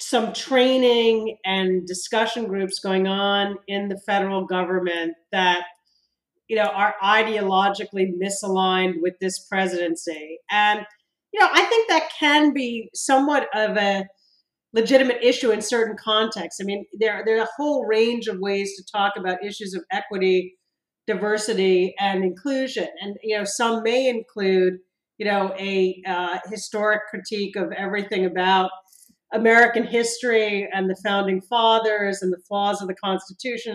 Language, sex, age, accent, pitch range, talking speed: English, female, 40-59, American, 190-225 Hz, 145 wpm